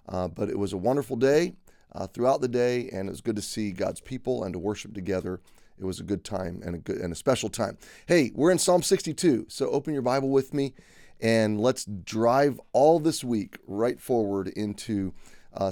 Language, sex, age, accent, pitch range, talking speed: English, male, 30-49, American, 105-140 Hz, 215 wpm